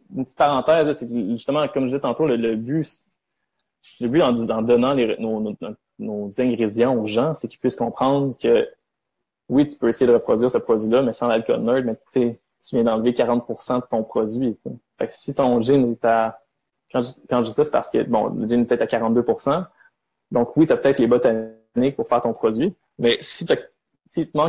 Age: 20-39